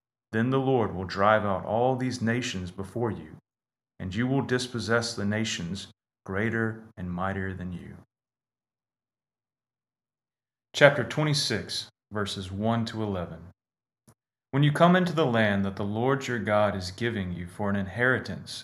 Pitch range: 100-125 Hz